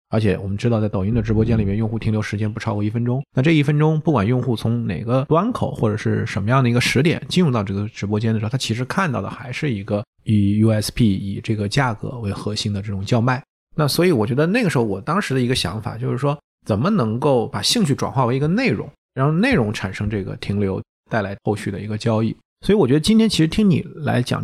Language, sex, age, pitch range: Chinese, male, 20-39, 105-145 Hz